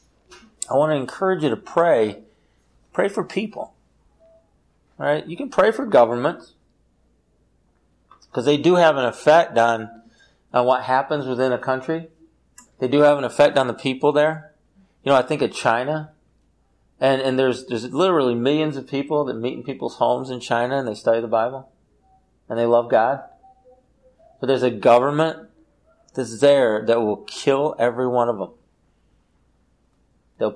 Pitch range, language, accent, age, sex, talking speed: 110-150 Hz, English, American, 40-59, male, 165 wpm